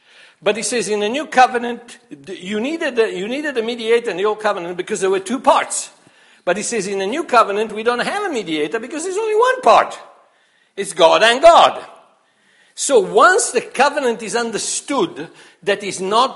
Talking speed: 185 wpm